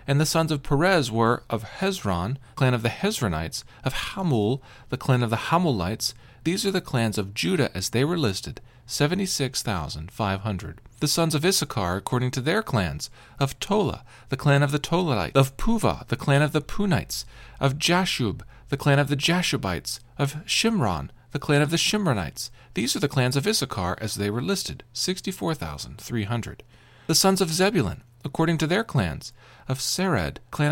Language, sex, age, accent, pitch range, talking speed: English, male, 40-59, American, 115-160 Hz, 170 wpm